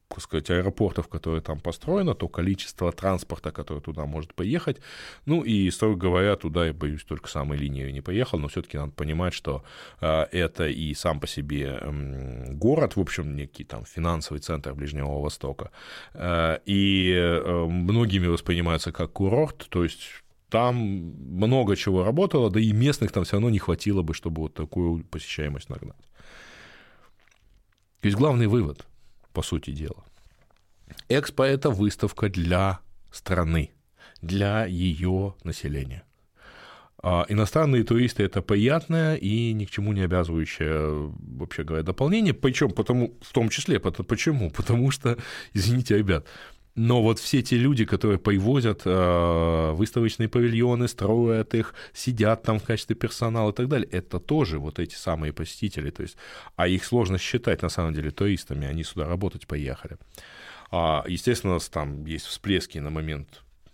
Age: 20-39